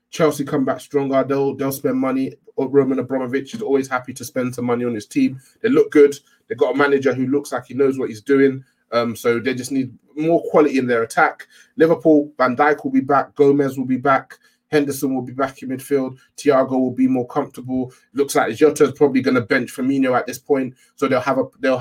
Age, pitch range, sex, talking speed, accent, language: 20-39, 120-145 Hz, male, 230 wpm, British, English